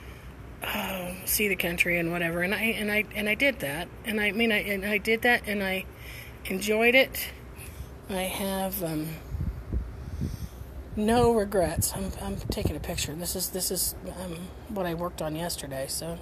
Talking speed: 175 wpm